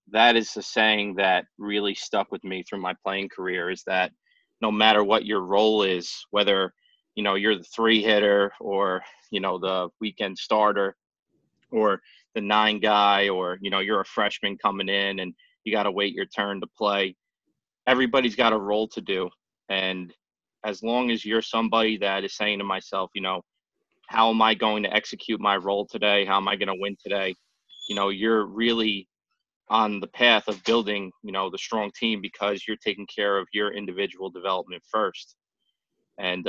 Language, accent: English, American